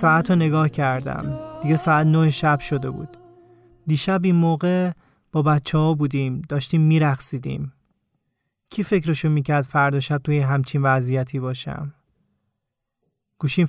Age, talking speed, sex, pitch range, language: 30-49, 125 wpm, male, 140-165 Hz, Persian